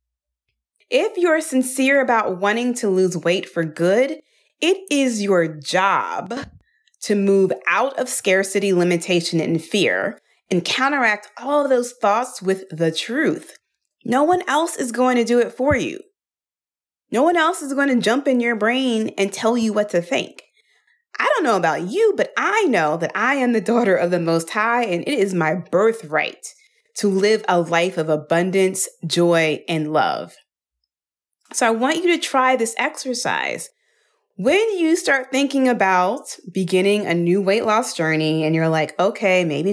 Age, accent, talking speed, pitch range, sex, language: 30-49, American, 170 wpm, 175-260 Hz, female, English